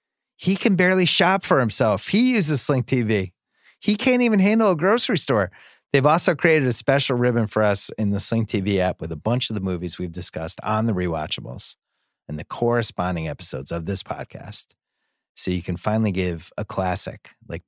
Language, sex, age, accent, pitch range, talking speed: English, male, 30-49, American, 100-140 Hz, 190 wpm